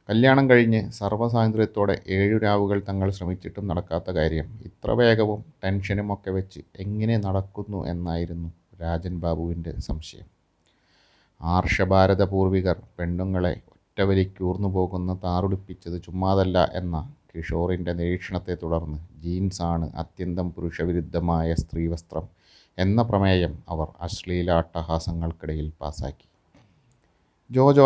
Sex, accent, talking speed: male, native, 80 wpm